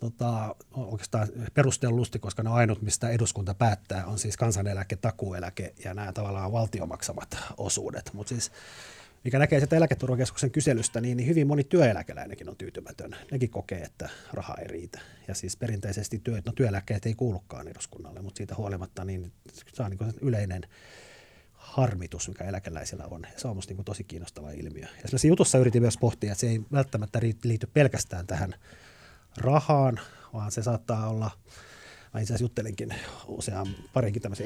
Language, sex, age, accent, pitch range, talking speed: Finnish, male, 30-49, native, 95-125 Hz, 150 wpm